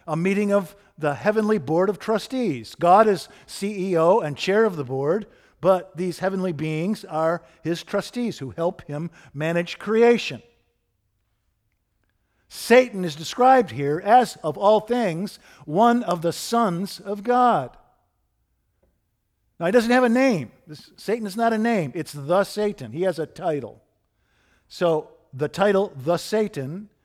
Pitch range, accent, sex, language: 145-195 Hz, American, male, English